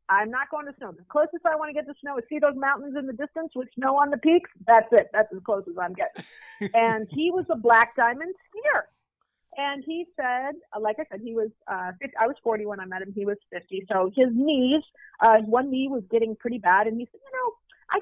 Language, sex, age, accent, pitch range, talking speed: English, female, 40-59, American, 210-290 Hz, 250 wpm